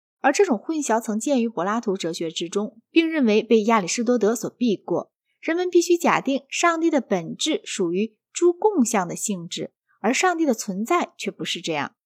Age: 20-39